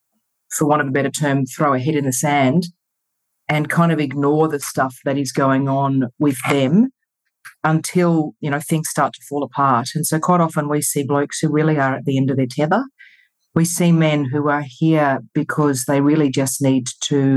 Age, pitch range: 40-59, 135-155 Hz